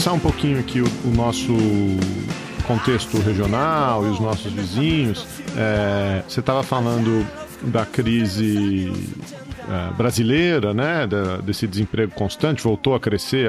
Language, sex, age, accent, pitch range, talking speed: Portuguese, male, 40-59, Brazilian, 105-130 Hz, 115 wpm